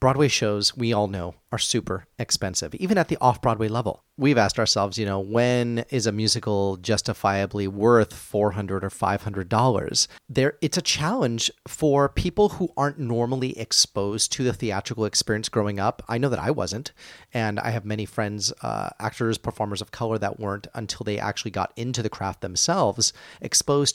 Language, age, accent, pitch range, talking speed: English, 30-49, American, 105-130 Hz, 170 wpm